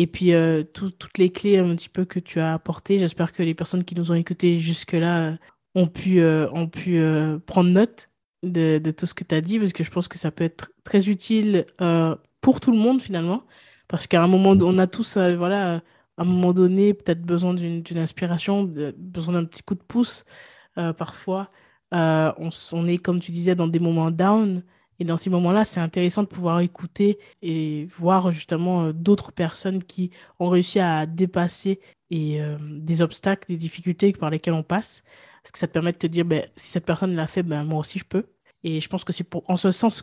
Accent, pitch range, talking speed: French, 165-185 Hz, 230 wpm